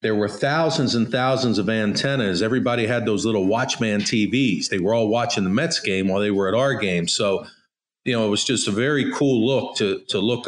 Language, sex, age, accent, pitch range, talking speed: English, male, 40-59, American, 110-135 Hz, 225 wpm